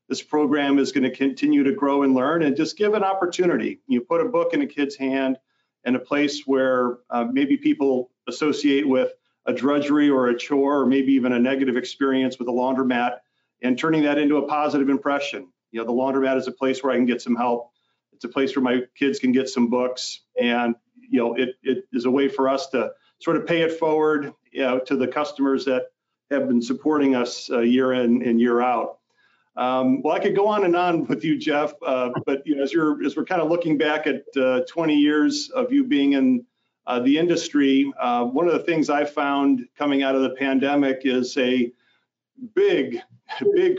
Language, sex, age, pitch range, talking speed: English, male, 40-59, 130-150 Hz, 215 wpm